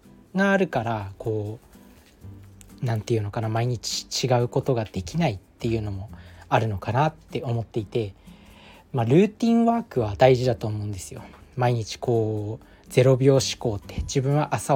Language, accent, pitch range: Japanese, native, 110-140 Hz